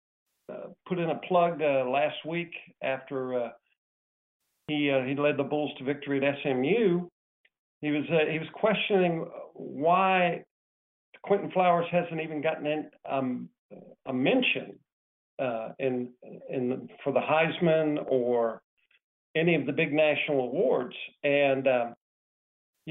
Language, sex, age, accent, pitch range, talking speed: English, male, 50-69, American, 130-160 Hz, 135 wpm